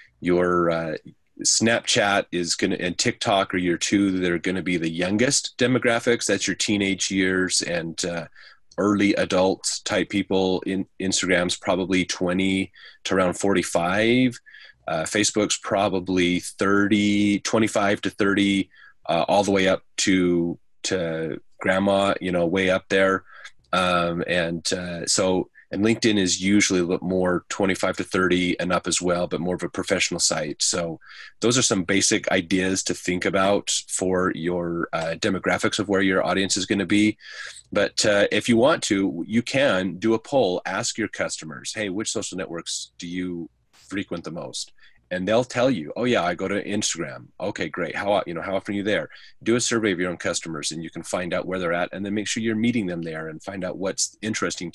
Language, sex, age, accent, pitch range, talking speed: English, male, 30-49, American, 90-100 Hz, 185 wpm